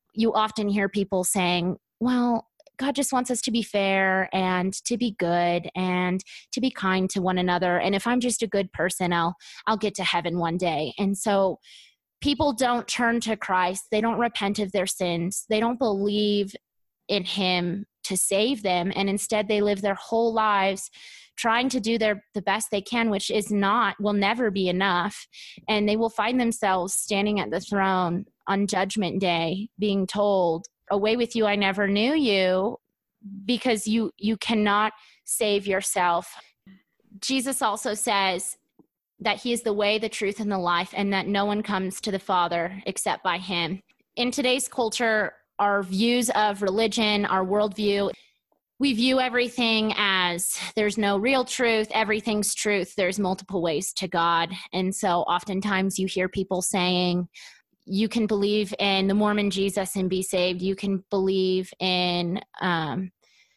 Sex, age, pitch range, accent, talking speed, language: female, 20-39, 185-220 Hz, American, 165 wpm, English